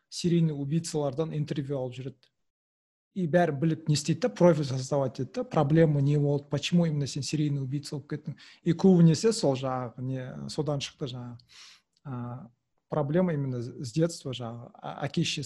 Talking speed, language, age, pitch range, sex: 130 wpm, Russian, 40-59, 135-165 Hz, male